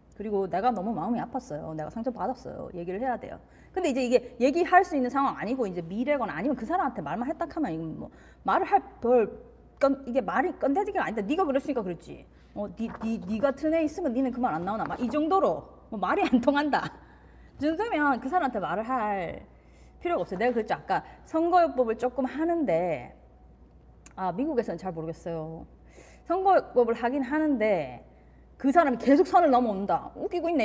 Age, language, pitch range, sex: 30-49, Korean, 205-305 Hz, female